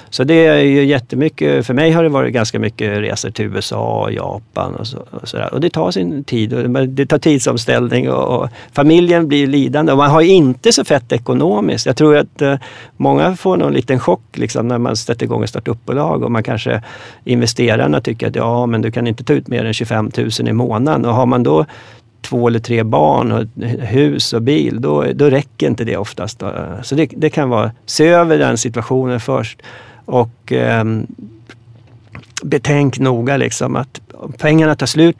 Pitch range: 115-140 Hz